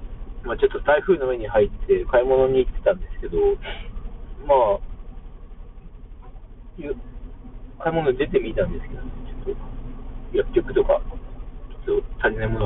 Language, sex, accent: Japanese, male, native